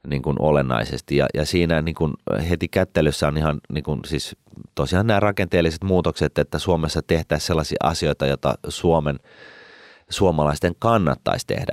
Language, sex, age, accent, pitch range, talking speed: Finnish, male, 30-49, native, 70-80 Hz, 150 wpm